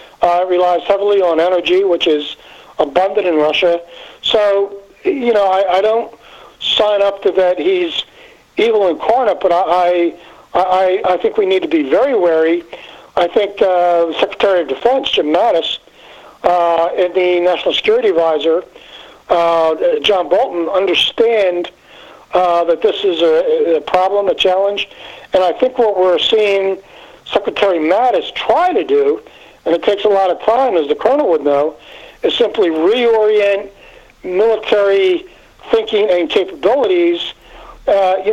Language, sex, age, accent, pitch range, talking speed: English, male, 60-79, American, 175-255 Hz, 145 wpm